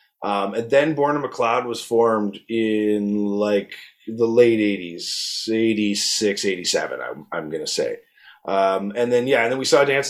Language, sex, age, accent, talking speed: English, male, 30-49, American, 165 wpm